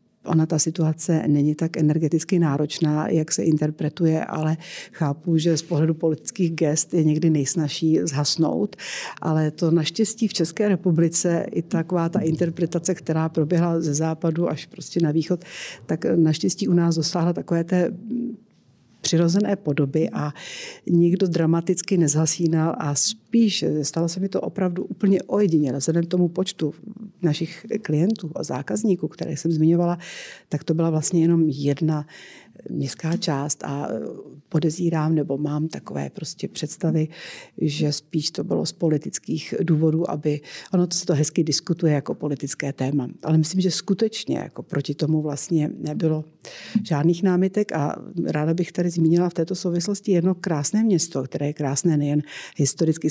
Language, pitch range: Czech, 155-180 Hz